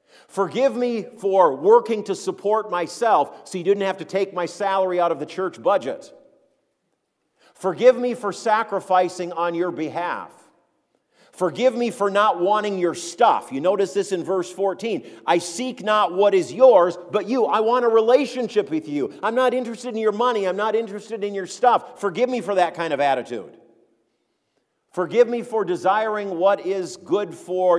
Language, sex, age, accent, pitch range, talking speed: English, male, 50-69, American, 170-215 Hz, 175 wpm